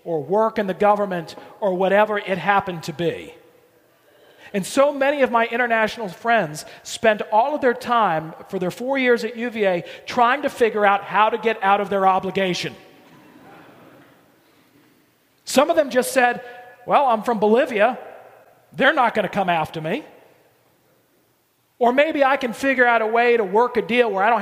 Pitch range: 195-245 Hz